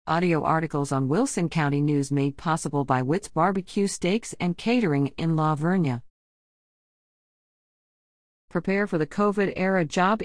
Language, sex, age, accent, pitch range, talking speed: English, female, 40-59, American, 150-200 Hz, 130 wpm